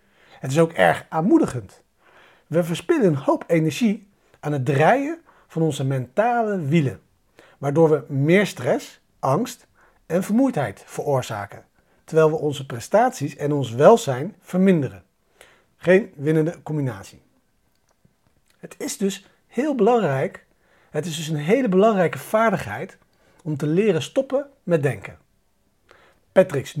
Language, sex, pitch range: Dutch, male, 135-200 Hz